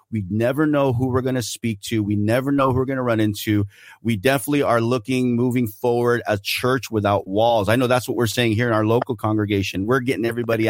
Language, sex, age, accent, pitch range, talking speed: English, male, 30-49, American, 110-130 Hz, 235 wpm